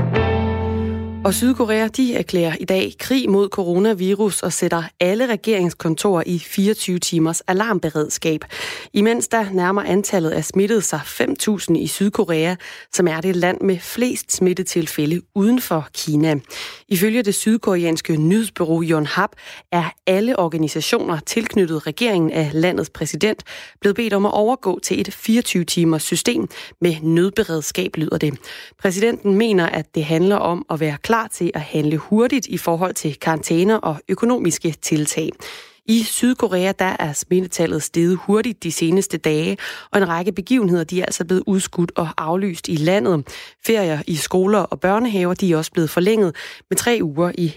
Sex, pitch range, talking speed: female, 165-205 Hz, 155 wpm